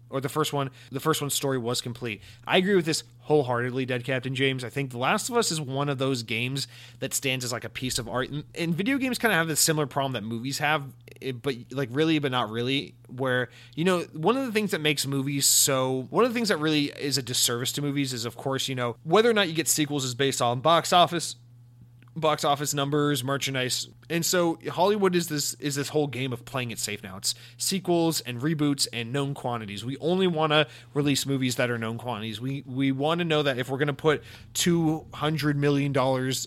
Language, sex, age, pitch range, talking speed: English, male, 30-49, 125-155 Hz, 235 wpm